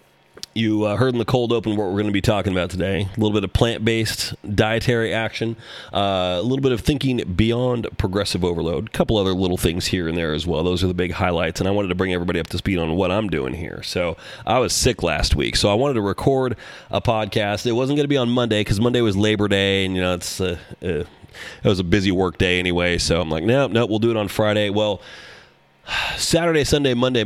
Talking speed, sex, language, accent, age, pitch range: 250 wpm, male, English, American, 30-49, 95-120 Hz